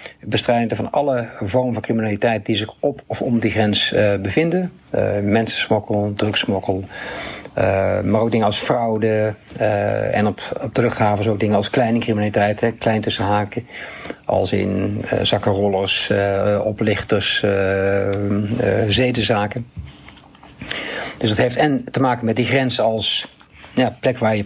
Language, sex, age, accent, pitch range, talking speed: Dutch, male, 50-69, Dutch, 105-125 Hz, 145 wpm